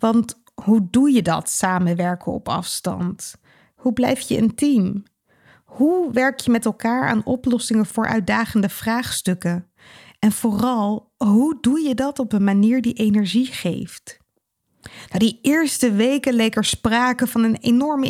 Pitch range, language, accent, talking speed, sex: 205-255 Hz, Dutch, Dutch, 155 wpm, female